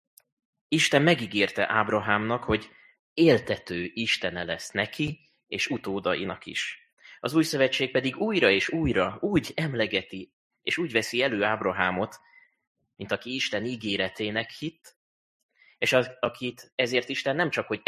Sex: male